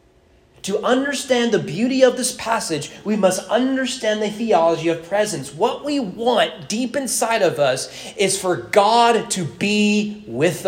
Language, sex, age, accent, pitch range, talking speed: English, male, 30-49, American, 120-200 Hz, 150 wpm